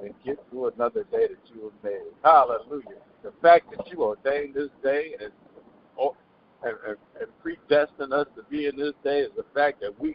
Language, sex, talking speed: English, male, 175 wpm